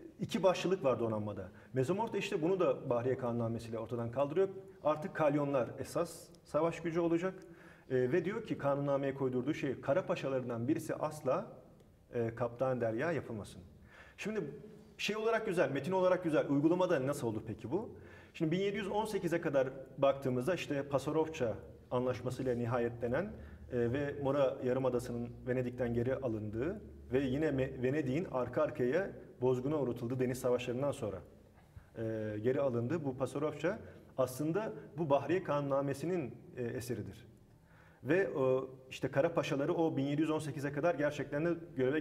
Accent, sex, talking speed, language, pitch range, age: Turkish, male, 130 wpm, English, 120-165 Hz, 40-59